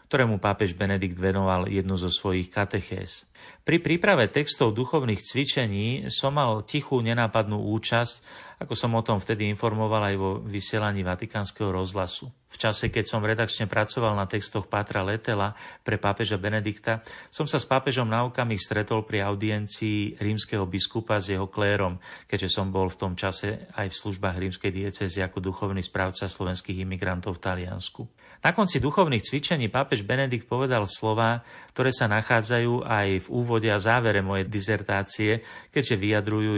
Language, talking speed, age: Slovak, 155 wpm, 40-59